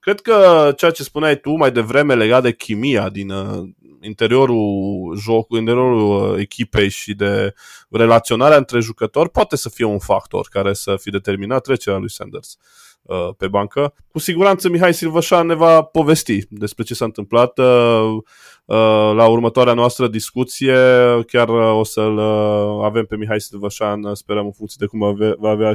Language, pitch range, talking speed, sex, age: Romanian, 105-130 Hz, 170 wpm, male, 20-39